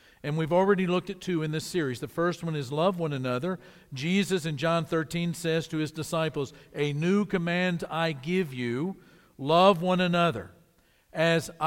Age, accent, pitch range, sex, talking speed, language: 50-69, American, 150-185 Hz, male, 175 wpm, English